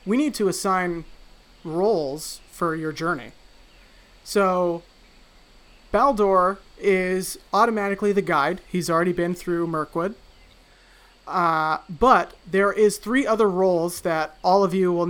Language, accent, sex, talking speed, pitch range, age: English, American, male, 125 wpm, 155-190 Hz, 30-49